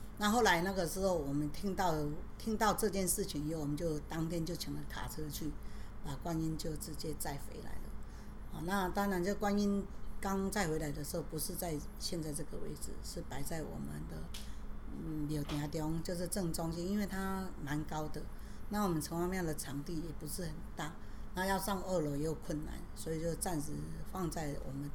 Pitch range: 150-180 Hz